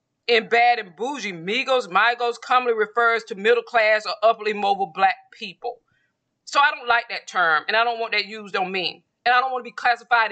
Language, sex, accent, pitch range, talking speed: English, female, American, 210-250 Hz, 215 wpm